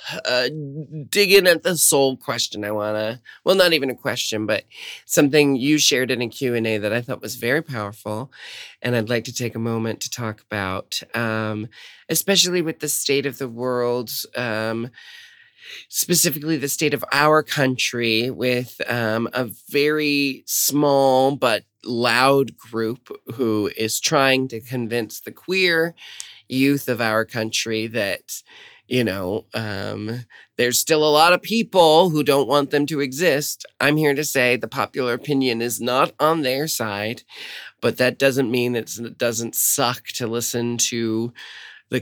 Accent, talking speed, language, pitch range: American, 160 wpm, English, 115-140 Hz